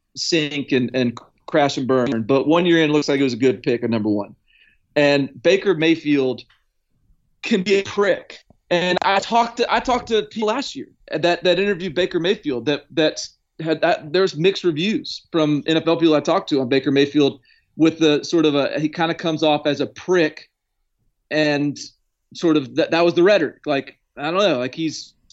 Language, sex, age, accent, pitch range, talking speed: English, male, 30-49, American, 140-185 Hz, 205 wpm